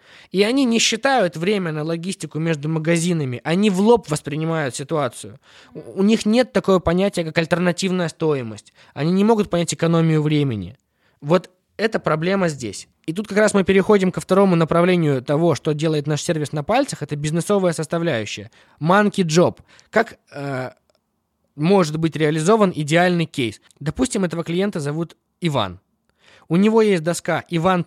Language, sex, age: Russian, male, 20-39